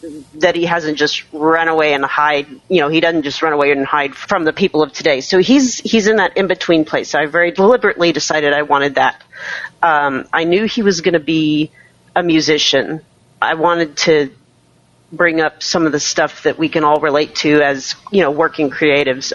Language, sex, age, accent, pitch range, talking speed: English, female, 40-59, American, 140-170 Hz, 210 wpm